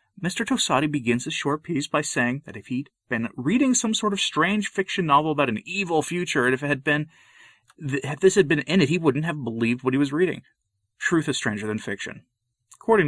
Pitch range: 115-175 Hz